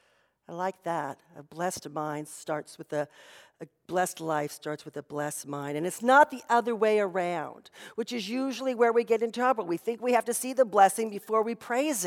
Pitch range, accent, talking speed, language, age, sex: 175-265 Hz, American, 215 wpm, English, 50-69, female